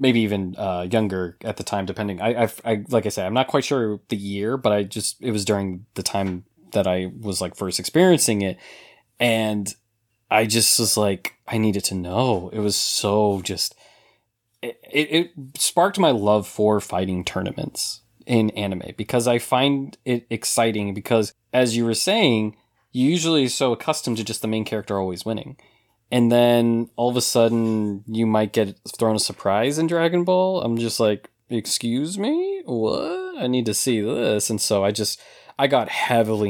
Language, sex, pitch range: English, male, 105-125 Hz